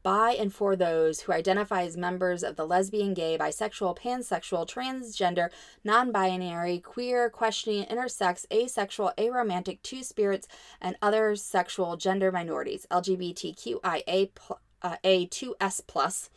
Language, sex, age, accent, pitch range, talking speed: English, female, 20-39, American, 180-230 Hz, 105 wpm